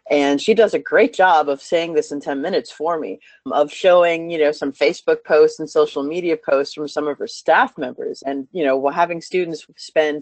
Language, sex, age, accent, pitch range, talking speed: English, female, 30-49, American, 140-170 Hz, 215 wpm